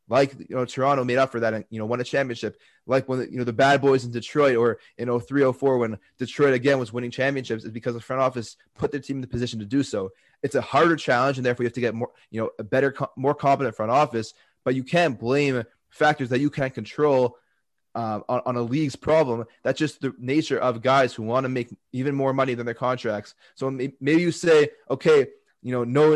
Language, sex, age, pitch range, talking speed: English, male, 20-39, 120-140 Hz, 240 wpm